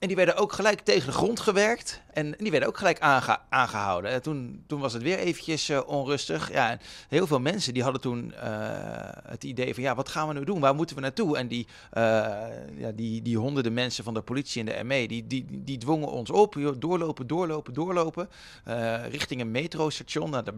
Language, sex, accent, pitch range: Dutch, male, Dutch, 110-145 Hz